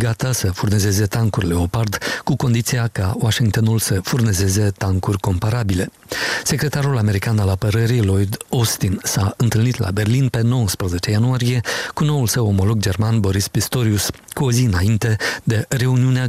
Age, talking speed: 50-69, 145 wpm